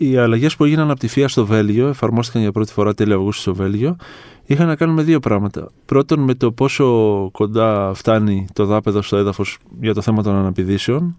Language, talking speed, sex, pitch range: Greek, 205 wpm, male, 105-145 Hz